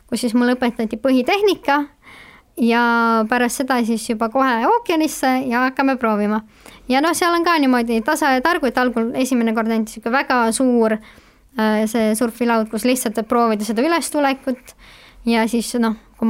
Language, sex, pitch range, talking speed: English, male, 225-270 Hz, 160 wpm